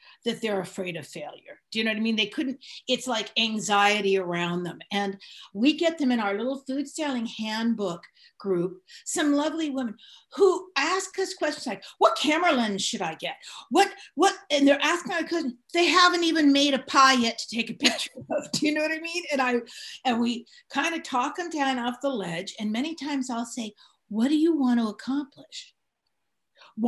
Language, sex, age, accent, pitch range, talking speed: English, female, 50-69, American, 230-310 Hz, 205 wpm